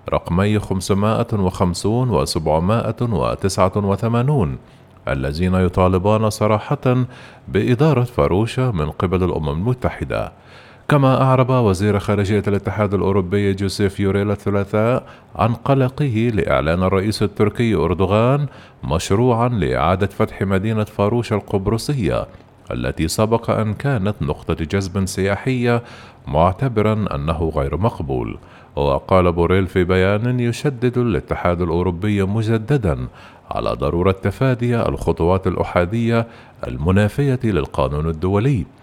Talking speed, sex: 95 wpm, male